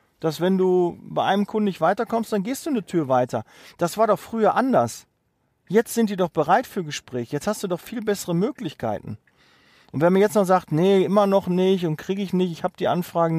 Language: German